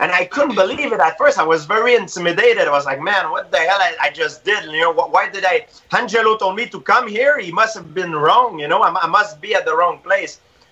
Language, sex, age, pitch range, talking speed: Portuguese, male, 30-49, 165-225 Hz, 275 wpm